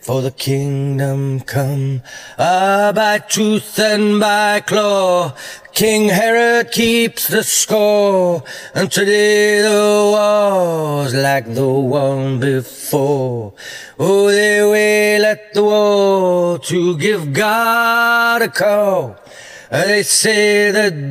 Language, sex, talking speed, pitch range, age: English, male, 110 wpm, 140-210 Hz, 40-59